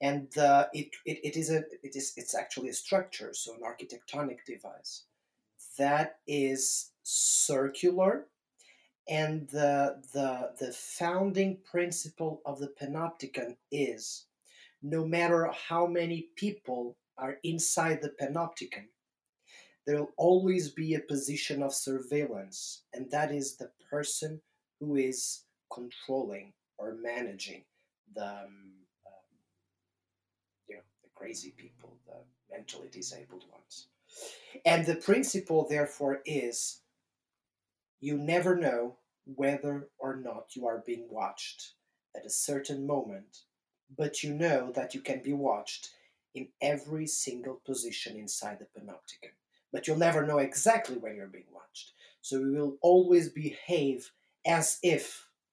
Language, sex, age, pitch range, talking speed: English, male, 30-49, 130-165 Hz, 120 wpm